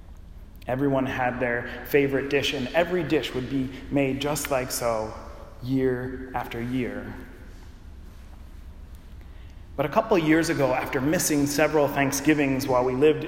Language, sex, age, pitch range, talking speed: English, male, 30-49, 110-145 Hz, 135 wpm